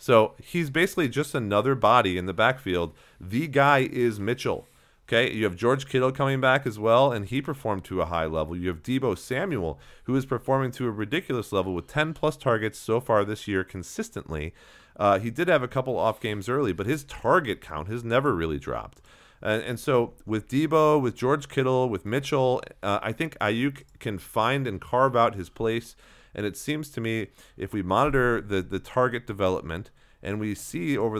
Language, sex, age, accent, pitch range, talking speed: English, male, 40-59, American, 90-125 Hz, 195 wpm